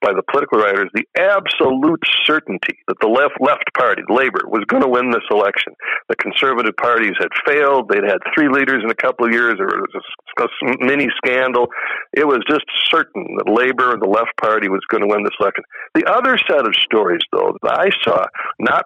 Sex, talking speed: male, 195 wpm